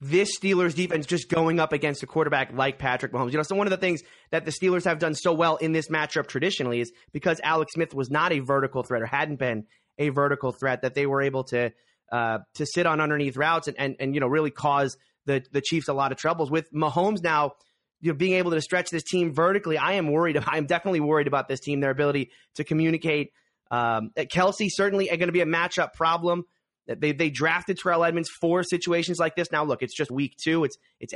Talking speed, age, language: 235 wpm, 30-49, English